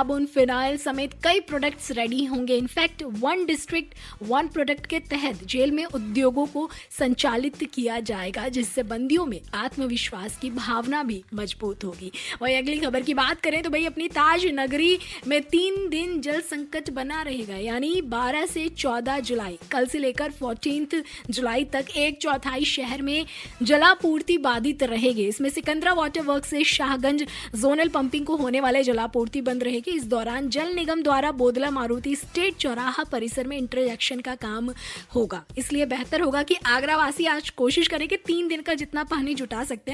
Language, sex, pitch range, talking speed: Hindi, female, 250-315 Hz, 135 wpm